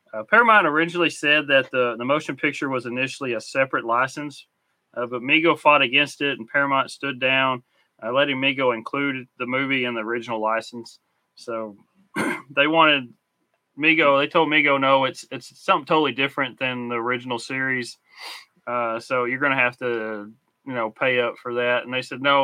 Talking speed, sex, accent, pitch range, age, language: 175 wpm, male, American, 125-155 Hz, 30-49, English